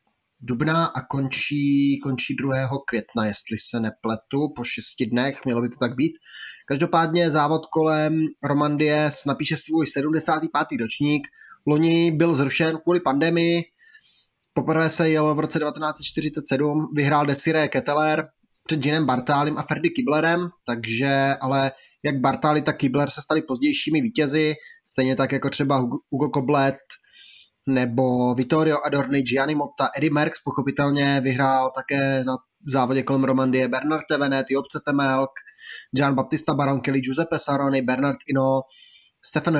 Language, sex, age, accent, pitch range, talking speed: Czech, male, 20-39, native, 135-155 Hz, 130 wpm